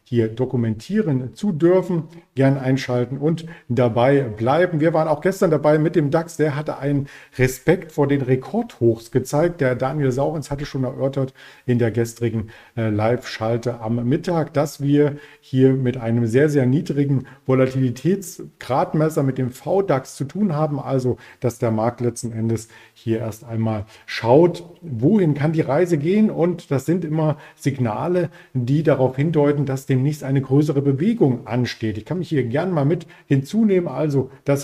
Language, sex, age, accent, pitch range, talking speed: German, male, 40-59, German, 125-155 Hz, 165 wpm